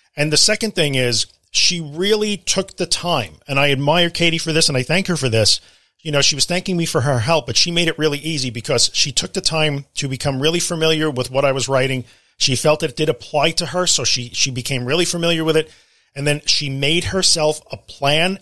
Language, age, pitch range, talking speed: English, 40-59, 125-160 Hz, 240 wpm